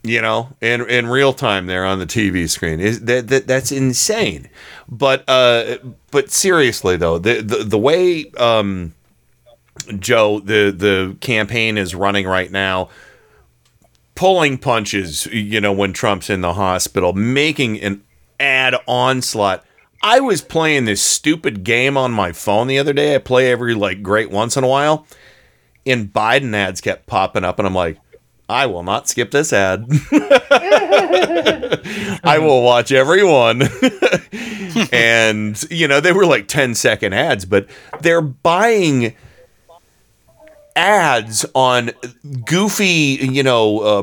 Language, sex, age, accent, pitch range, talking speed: English, male, 40-59, American, 100-140 Hz, 145 wpm